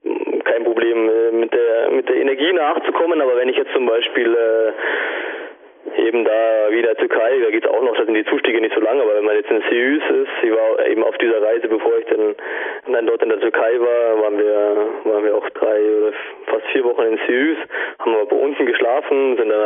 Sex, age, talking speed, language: male, 20-39, 220 wpm, German